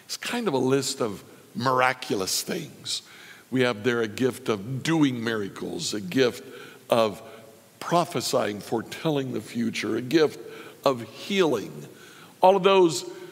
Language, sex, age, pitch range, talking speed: English, male, 60-79, 130-185 Hz, 135 wpm